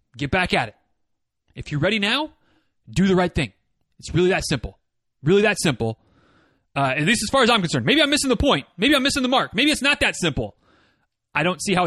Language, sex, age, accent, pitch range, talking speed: English, male, 30-49, American, 140-200 Hz, 235 wpm